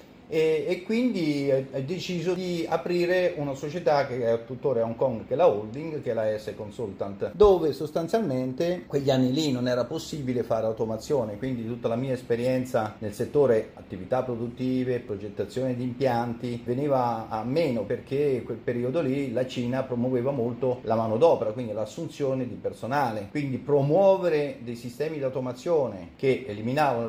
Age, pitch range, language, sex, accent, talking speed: 40-59, 115-145 Hz, Italian, male, native, 155 wpm